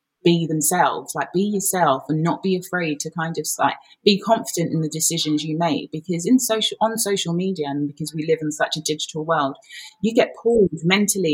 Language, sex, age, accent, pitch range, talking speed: English, female, 20-39, British, 155-185 Hz, 205 wpm